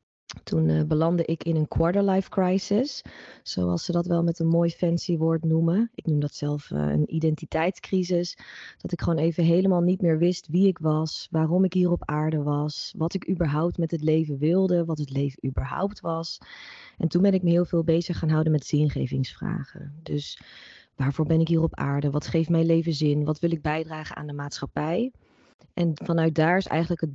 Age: 20-39